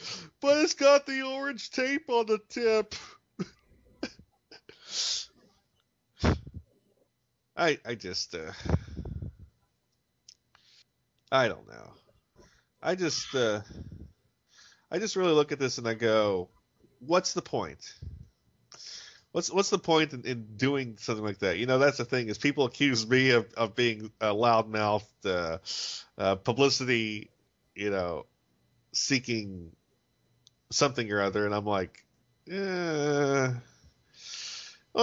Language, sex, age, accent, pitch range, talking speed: English, male, 50-69, American, 110-155 Hz, 115 wpm